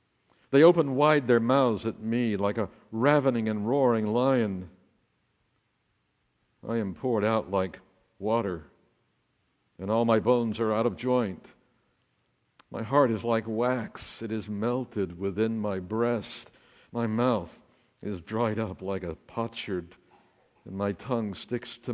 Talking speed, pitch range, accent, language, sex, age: 140 wpm, 100-120 Hz, American, English, male, 60-79